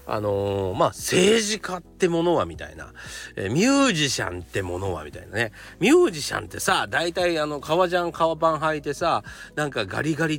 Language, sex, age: Japanese, male, 40-59